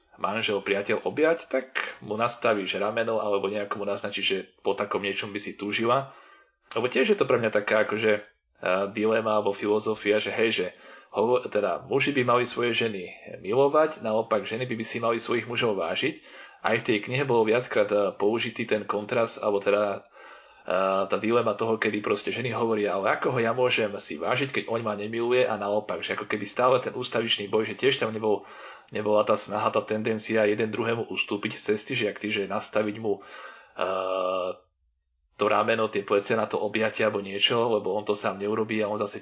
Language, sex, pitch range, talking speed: Slovak, male, 100-110 Hz, 190 wpm